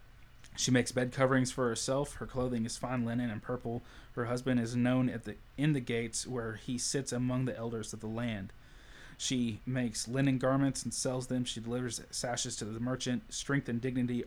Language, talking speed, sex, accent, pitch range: English, 200 wpm, male, American, 115-125 Hz